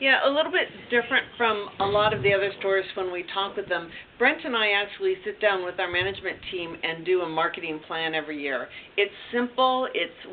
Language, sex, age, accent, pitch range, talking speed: English, female, 50-69, American, 180-235 Hz, 215 wpm